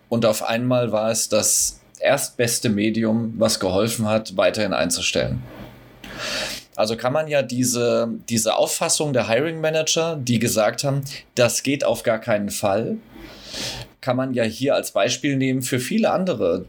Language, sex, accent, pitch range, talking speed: German, male, German, 110-135 Hz, 145 wpm